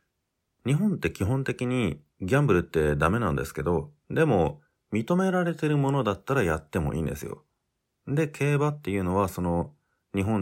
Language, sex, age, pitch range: Japanese, male, 30-49, 80-110 Hz